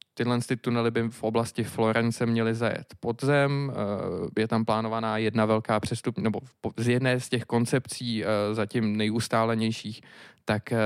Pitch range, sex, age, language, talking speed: 110-125 Hz, male, 20-39, Czech, 140 wpm